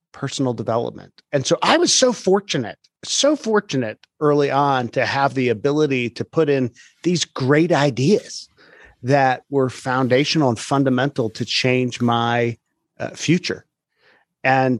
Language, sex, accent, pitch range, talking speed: English, male, American, 130-175 Hz, 135 wpm